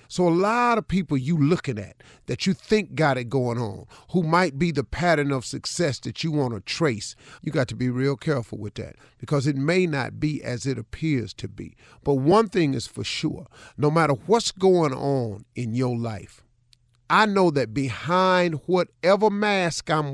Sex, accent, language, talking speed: male, American, English, 195 wpm